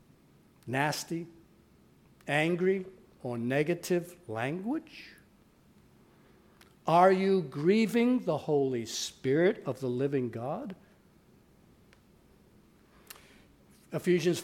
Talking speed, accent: 65 wpm, American